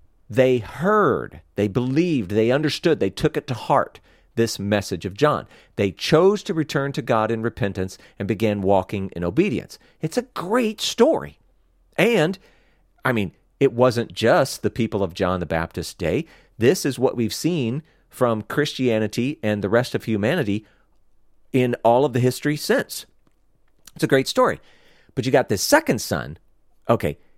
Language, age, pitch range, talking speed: English, 40-59, 110-155 Hz, 160 wpm